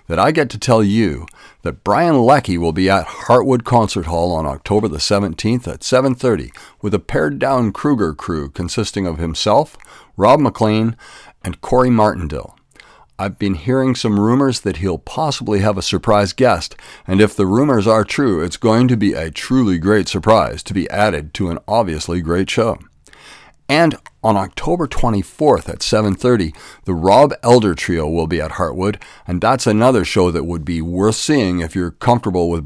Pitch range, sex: 90-120 Hz, male